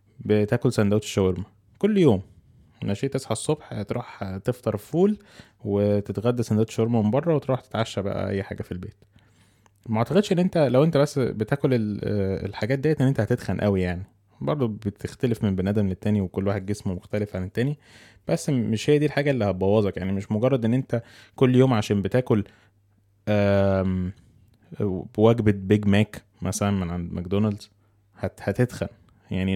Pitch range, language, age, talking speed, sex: 100-120 Hz, Arabic, 20-39, 150 wpm, male